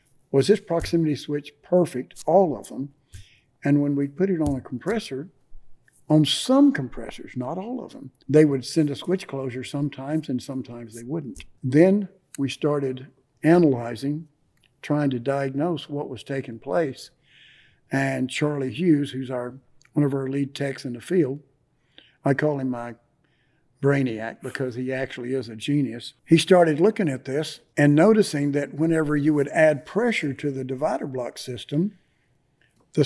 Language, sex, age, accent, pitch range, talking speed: English, male, 60-79, American, 130-155 Hz, 160 wpm